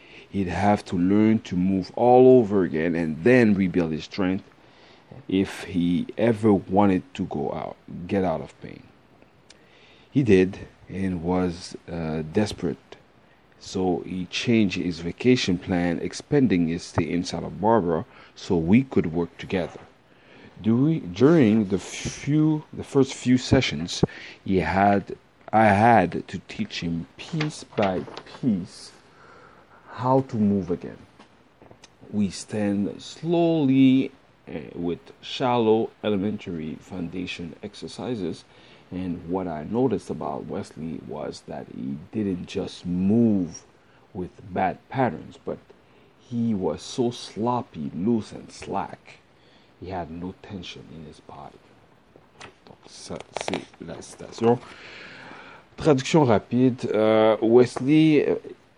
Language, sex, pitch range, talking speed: French, male, 90-120 Hz, 120 wpm